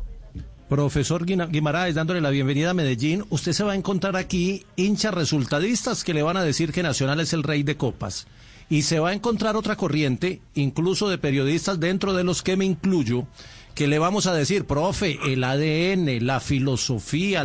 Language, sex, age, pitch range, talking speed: Spanish, male, 40-59, 125-175 Hz, 180 wpm